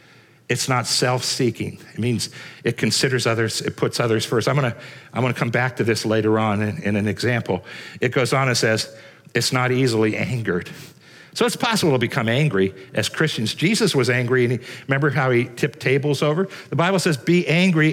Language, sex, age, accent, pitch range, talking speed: English, male, 60-79, American, 115-150 Hz, 195 wpm